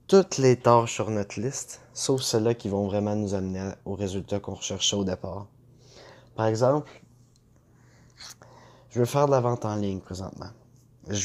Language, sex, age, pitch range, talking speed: French, male, 20-39, 105-125 Hz, 165 wpm